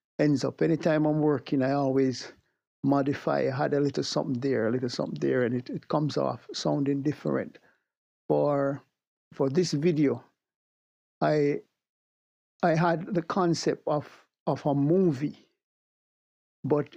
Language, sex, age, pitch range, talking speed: English, male, 60-79, 140-160 Hz, 140 wpm